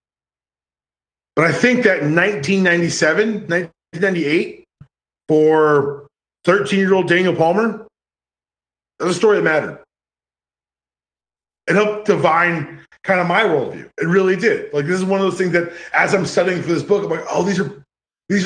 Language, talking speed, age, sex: English, 150 wpm, 30-49, male